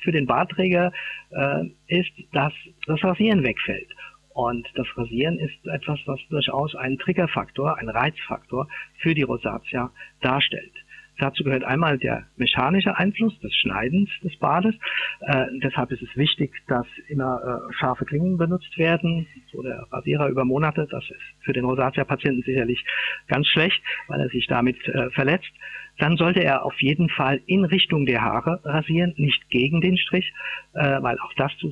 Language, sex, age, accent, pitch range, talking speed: German, male, 50-69, German, 130-170 Hz, 160 wpm